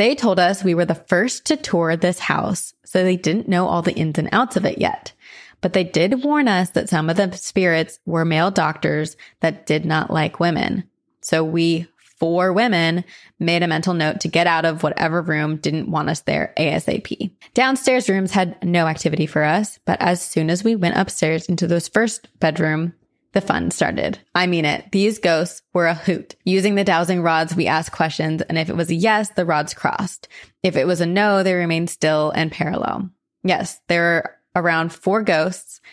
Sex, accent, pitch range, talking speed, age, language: female, American, 165-190 Hz, 200 wpm, 20-39, English